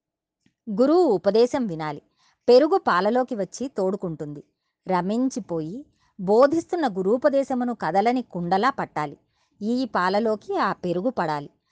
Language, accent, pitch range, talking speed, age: Telugu, native, 180-255 Hz, 90 wpm, 30-49